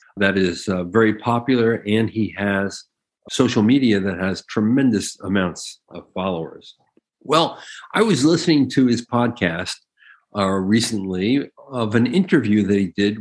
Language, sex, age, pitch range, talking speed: English, male, 50-69, 105-135 Hz, 140 wpm